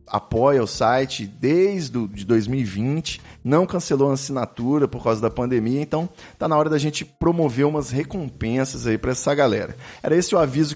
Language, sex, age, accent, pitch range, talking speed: Portuguese, male, 40-59, Brazilian, 130-175 Hz, 180 wpm